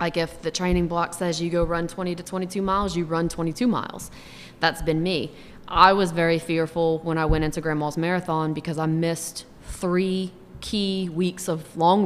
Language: English